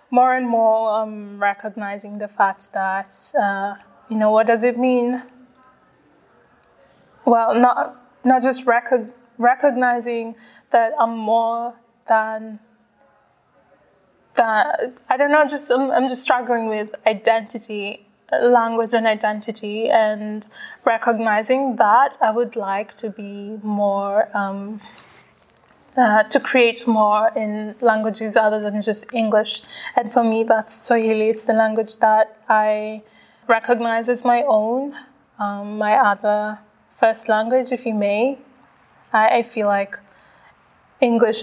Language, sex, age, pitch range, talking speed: German, female, 20-39, 210-240 Hz, 125 wpm